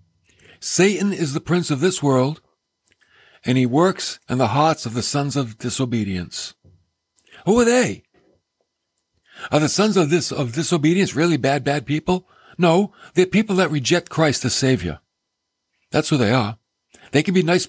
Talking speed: 165 wpm